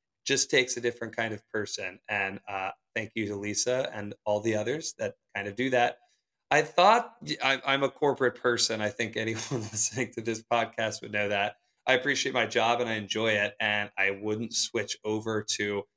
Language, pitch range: English, 110-135 Hz